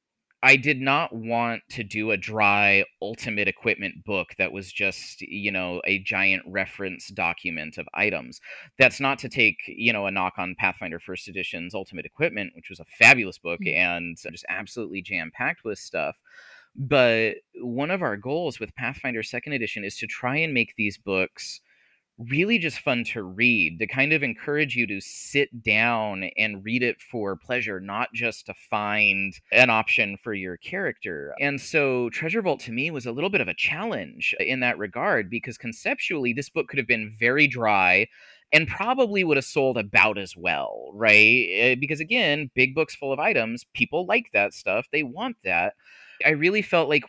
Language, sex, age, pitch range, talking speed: English, male, 30-49, 100-135 Hz, 180 wpm